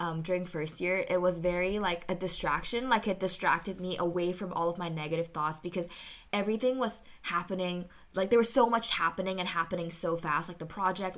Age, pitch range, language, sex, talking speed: 10-29, 170-195 Hz, English, female, 205 wpm